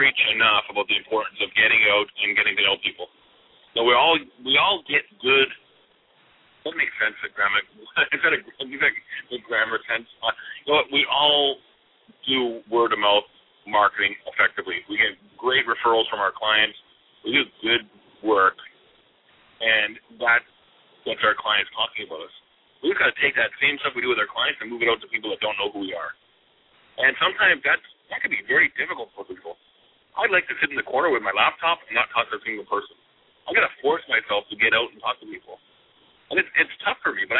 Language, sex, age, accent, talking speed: English, male, 40-59, American, 215 wpm